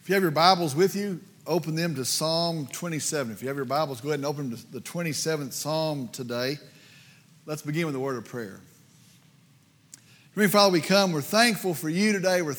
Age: 40-59